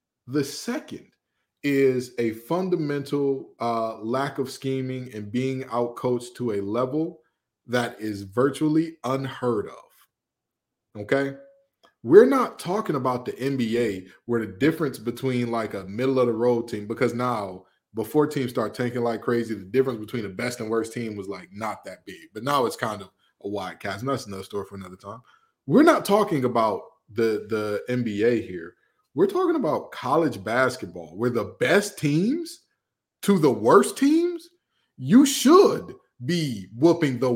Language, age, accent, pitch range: English, 20-39, American, 115-160 Hz